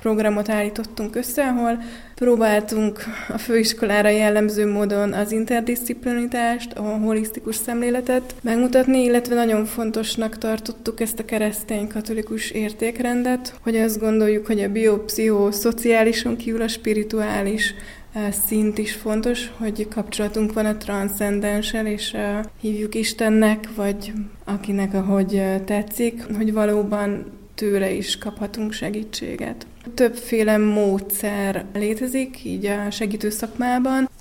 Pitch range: 210-230 Hz